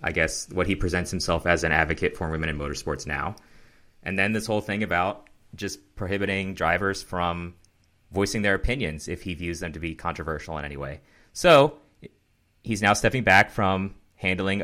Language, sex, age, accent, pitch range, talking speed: English, male, 30-49, American, 85-105 Hz, 180 wpm